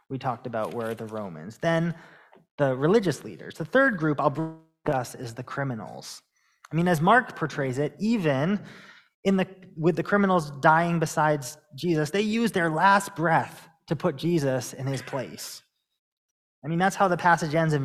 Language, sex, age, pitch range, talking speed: English, male, 20-39, 130-180 Hz, 180 wpm